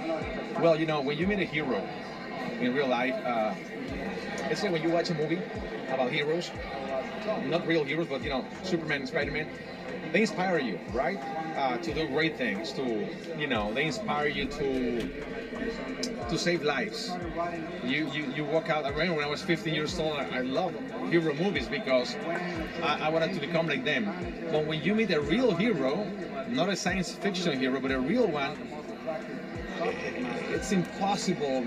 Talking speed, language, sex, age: 170 wpm, English, male, 30-49